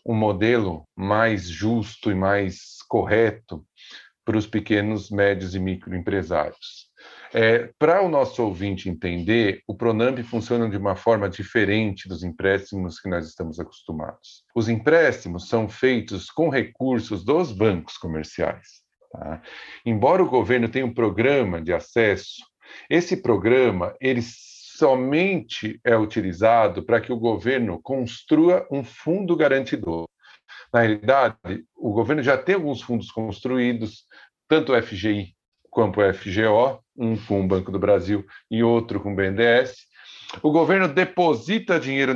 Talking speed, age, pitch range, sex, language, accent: 135 wpm, 50-69, 100-130 Hz, male, Portuguese, Brazilian